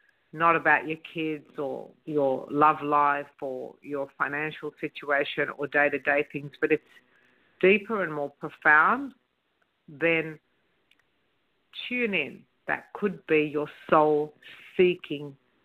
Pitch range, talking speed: 145-165 Hz, 115 wpm